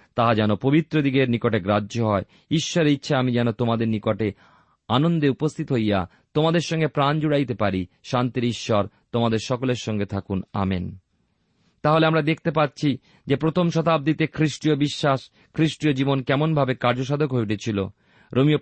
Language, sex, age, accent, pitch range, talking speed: Bengali, male, 40-59, native, 115-150 Hz, 120 wpm